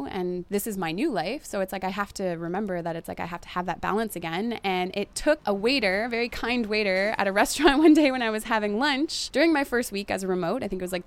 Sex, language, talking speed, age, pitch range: female, English, 295 wpm, 20-39, 180-235 Hz